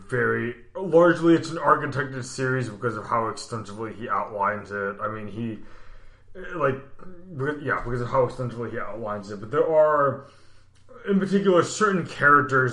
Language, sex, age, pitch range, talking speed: English, male, 20-39, 105-145 Hz, 155 wpm